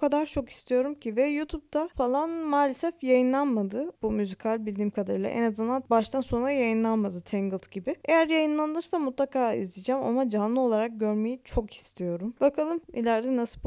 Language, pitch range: Turkish, 225-300 Hz